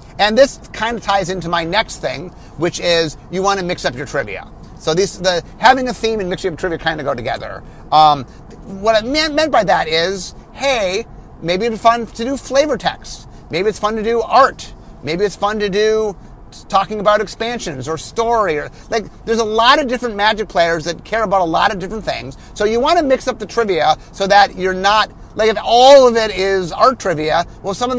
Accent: American